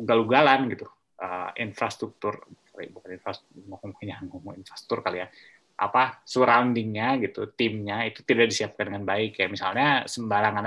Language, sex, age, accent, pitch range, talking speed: Indonesian, male, 20-39, native, 105-140 Hz, 130 wpm